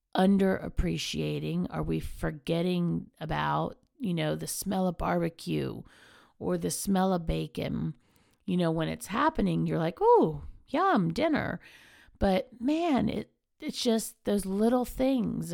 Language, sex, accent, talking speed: English, female, American, 135 wpm